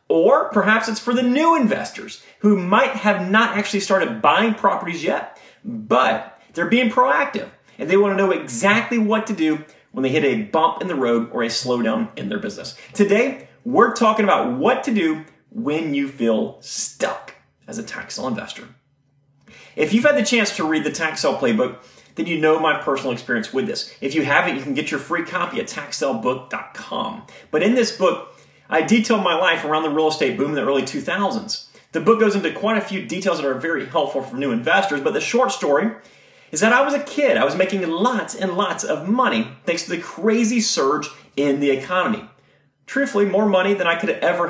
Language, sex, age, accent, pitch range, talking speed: English, male, 30-49, American, 155-225 Hz, 210 wpm